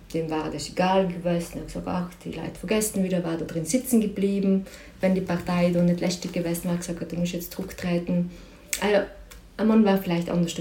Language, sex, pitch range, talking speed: German, female, 160-185 Hz, 210 wpm